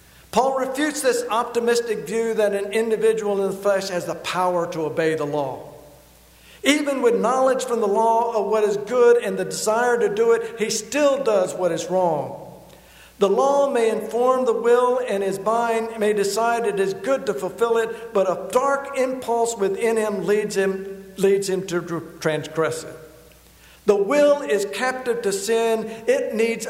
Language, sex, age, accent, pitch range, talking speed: English, male, 60-79, American, 170-225 Hz, 175 wpm